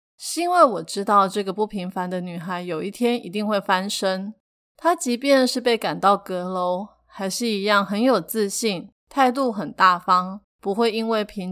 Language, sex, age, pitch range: Chinese, female, 20-39, 185-225 Hz